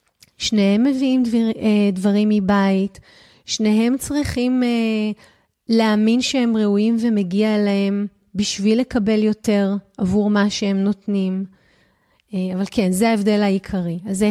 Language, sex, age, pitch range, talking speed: Hebrew, female, 30-49, 200-240 Hz, 105 wpm